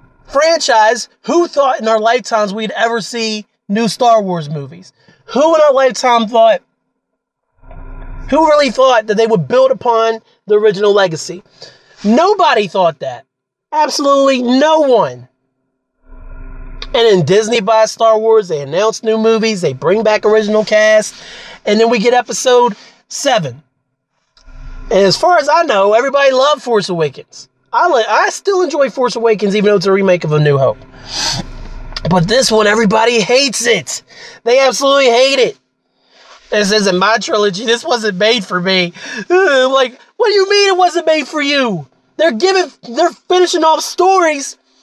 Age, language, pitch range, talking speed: 30-49, English, 210-300 Hz, 155 wpm